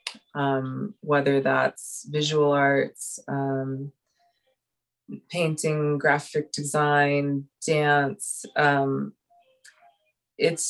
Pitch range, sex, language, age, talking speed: 140-175 Hz, female, English, 20-39, 65 wpm